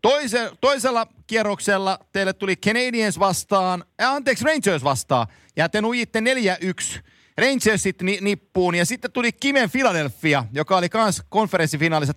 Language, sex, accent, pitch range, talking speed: Finnish, male, native, 160-230 Hz, 135 wpm